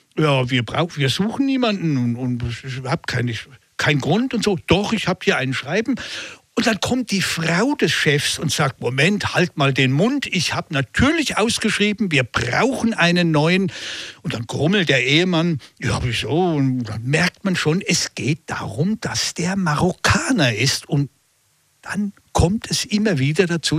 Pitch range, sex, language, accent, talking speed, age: 140-205 Hz, male, German, German, 175 wpm, 60-79